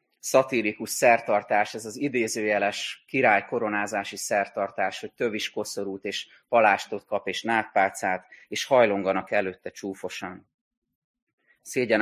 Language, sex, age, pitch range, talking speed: Hungarian, male, 30-49, 100-120 Hz, 100 wpm